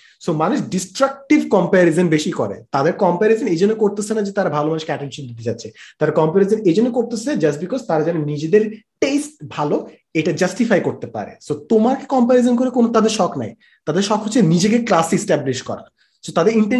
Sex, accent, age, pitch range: male, native, 30-49, 155-215 Hz